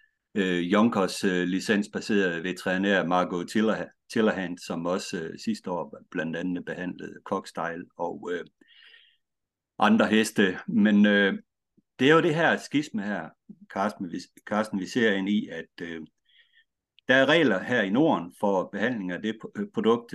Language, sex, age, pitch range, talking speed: Danish, male, 60-79, 90-115 Hz, 150 wpm